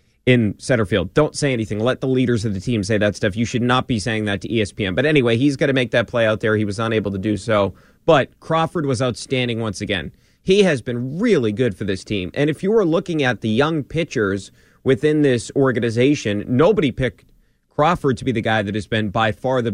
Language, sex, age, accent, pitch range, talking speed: English, male, 30-49, American, 115-140 Hz, 235 wpm